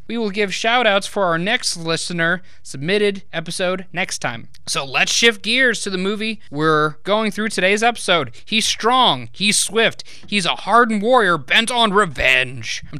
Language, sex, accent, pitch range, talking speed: English, male, American, 155-230 Hz, 160 wpm